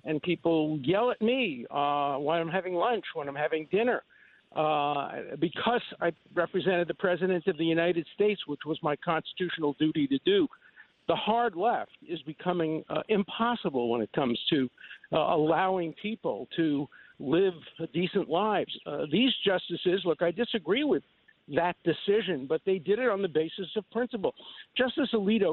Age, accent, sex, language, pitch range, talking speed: 50-69, American, male, English, 155-205 Hz, 160 wpm